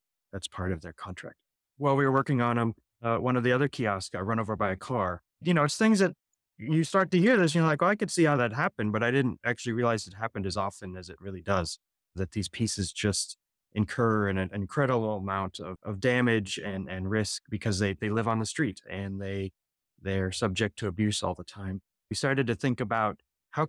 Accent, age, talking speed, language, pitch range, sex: American, 20-39, 240 wpm, English, 100-120 Hz, male